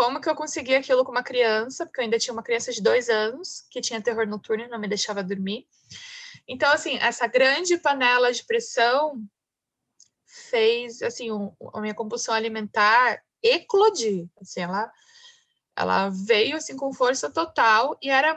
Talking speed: 165 wpm